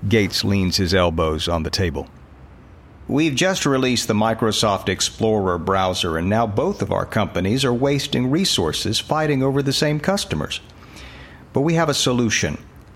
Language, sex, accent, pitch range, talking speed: English, male, American, 95-145 Hz, 155 wpm